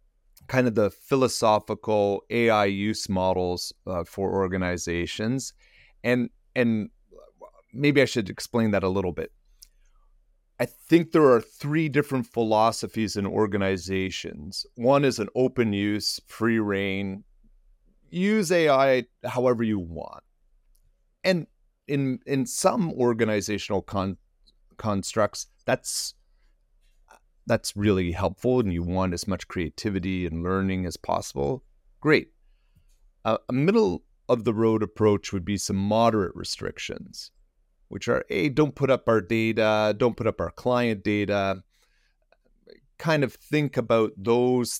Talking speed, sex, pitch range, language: 125 wpm, male, 95-125 Hz, English